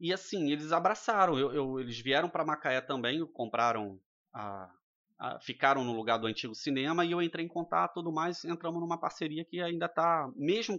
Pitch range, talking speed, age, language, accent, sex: 135-180 Hz, 195 wpm, 20-39, Portuguese, Brazilian, male